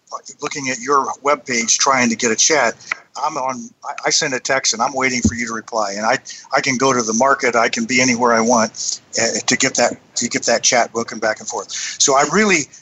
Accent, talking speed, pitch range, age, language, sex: American, 245 wpm, 115-140 Hz, 50-69, English, male